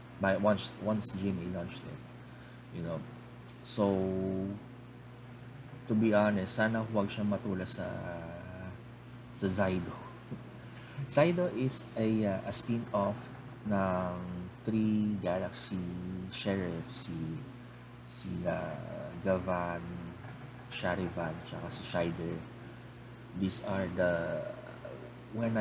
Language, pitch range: English, 90-120 Hz